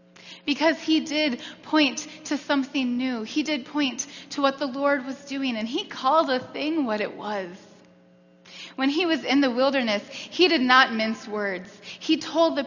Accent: American